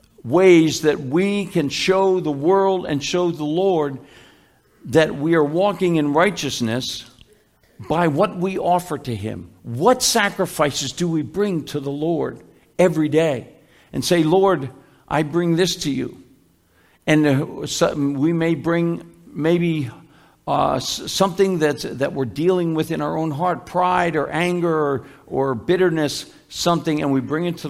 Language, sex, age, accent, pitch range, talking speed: English, male, 60-79, American, 140-180 Hz, 145 wpm